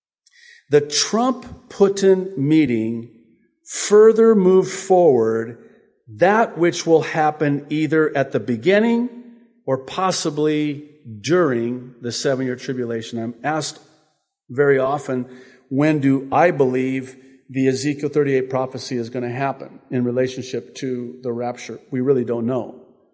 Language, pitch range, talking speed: English, 120-150 Hz, 115 wpm